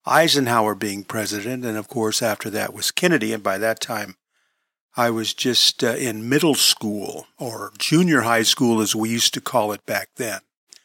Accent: American